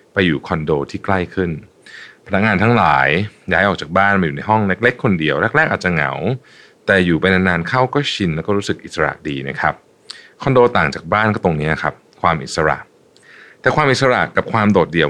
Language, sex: Thai, male